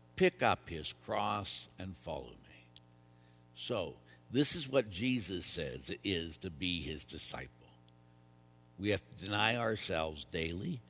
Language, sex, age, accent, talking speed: English, male, 60-79, American, 140 wpm